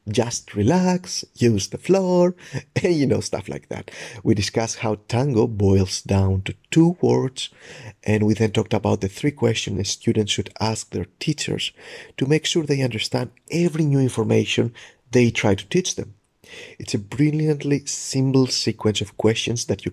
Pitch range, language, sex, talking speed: 105-130 Hz, English, male, 165 wpm